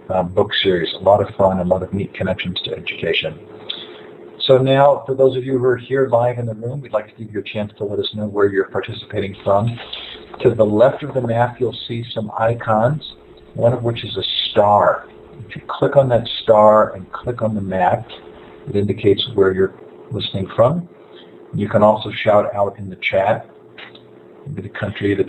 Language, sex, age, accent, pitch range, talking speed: English, male, 50-69, American, 100-120 Hz, 210 wpm